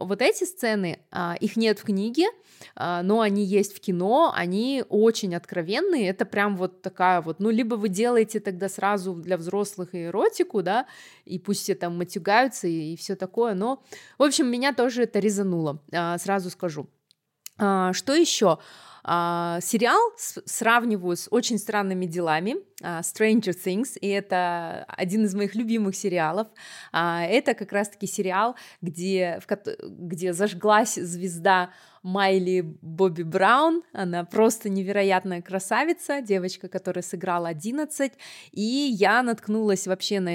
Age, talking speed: 20-39, 130 wpm